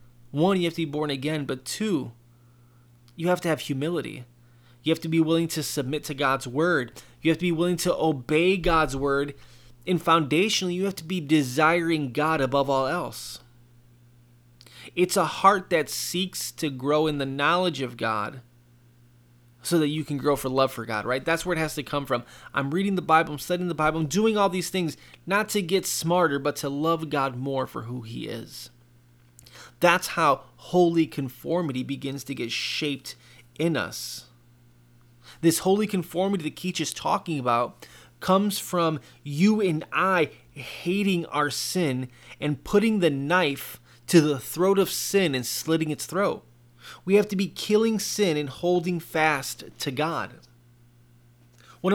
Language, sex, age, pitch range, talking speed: English, male, 20-39, 120-175 Hz, 175 wpm